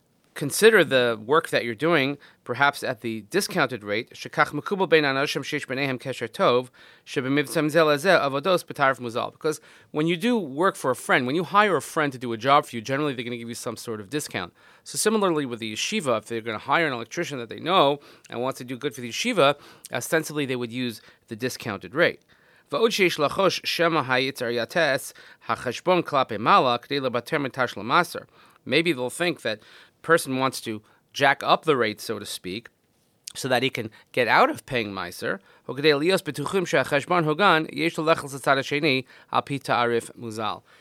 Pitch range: 120-160 Hz